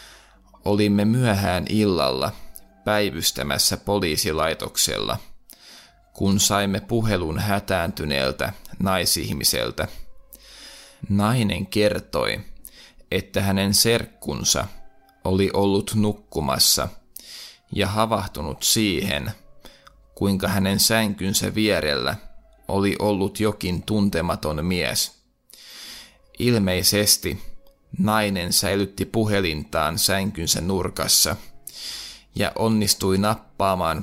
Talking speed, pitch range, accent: 70 wpm, 95-105 Hz, native